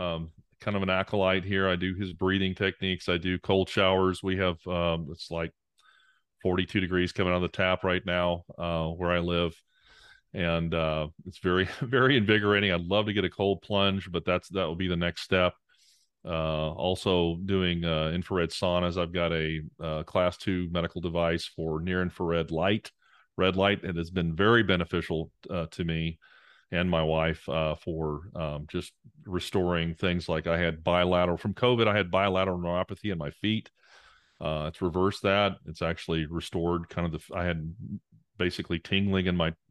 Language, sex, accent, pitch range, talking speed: English, male, American, 85-95 Hz, 180 wpm